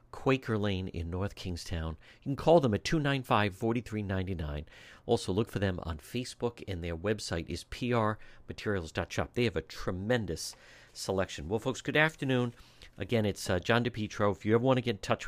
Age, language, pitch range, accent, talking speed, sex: 50-69, English, 95-130 Hz, American, 175 wpm, male